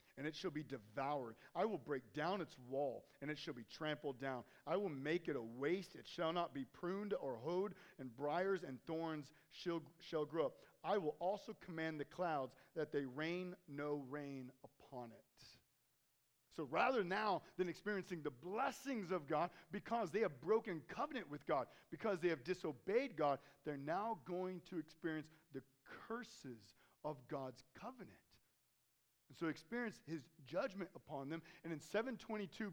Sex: male